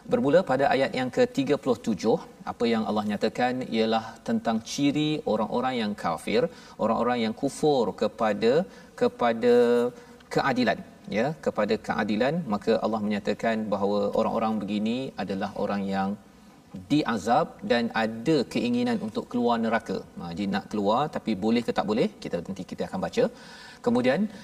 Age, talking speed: 40-59, 135 wpm